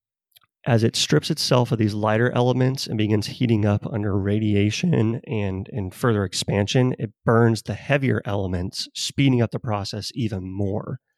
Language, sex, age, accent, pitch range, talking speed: English, male, 30-49, American, 105-125 Hz, 155 wpm